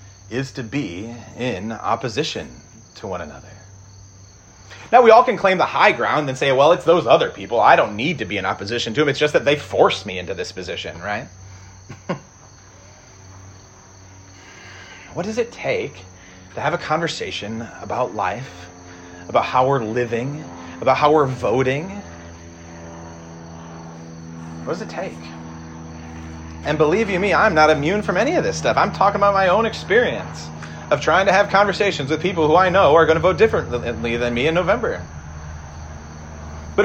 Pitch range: 90-140 Hz